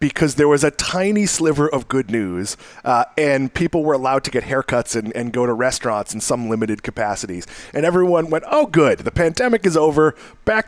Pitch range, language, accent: 120-165 Hz, English, American